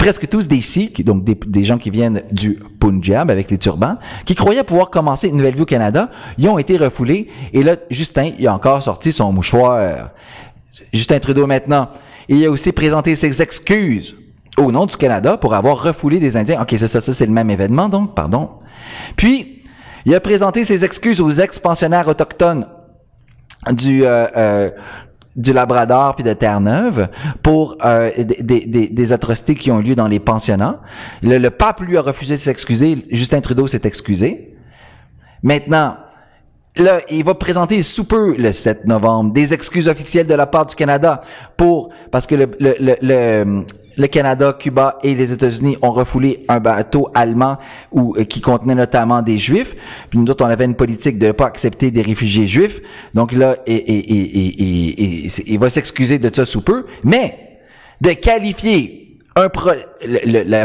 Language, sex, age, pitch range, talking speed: French, male, 30-49, 115-155 Hz, 170 wpm